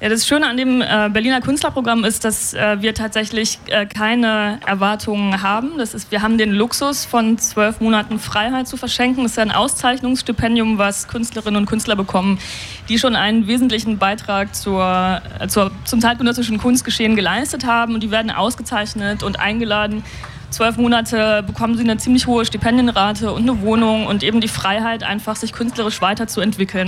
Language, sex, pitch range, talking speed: German, female, 200-230 Hz, 160 wpm